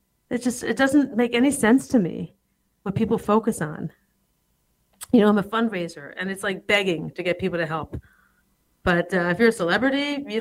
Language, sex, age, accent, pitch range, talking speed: English, female, 40-59, American, 165-215 Hz, 195 wpm